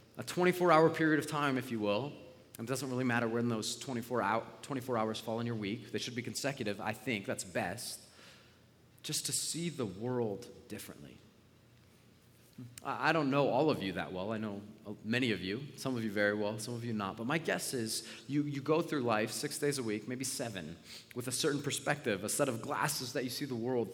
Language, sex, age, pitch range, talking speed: English, male, 30-49, 105-130 Hz, 210 wpm